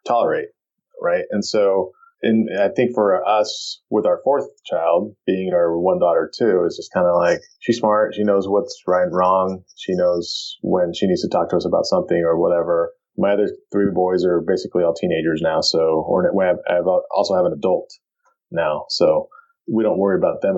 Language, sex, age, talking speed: English, male, 30-49, 205 wpm